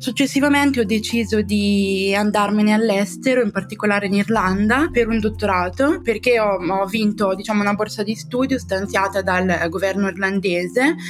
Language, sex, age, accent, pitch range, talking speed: Italian, female, 20-39, native, 180-210 Hz, 140 wpm